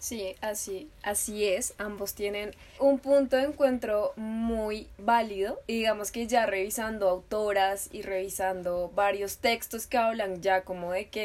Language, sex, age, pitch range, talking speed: Spanish, female, 10-29, 195-230 Hz, 150 wpm